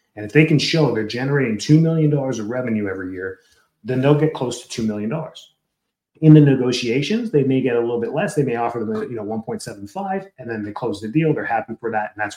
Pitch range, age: 115-150 Hz, 30-49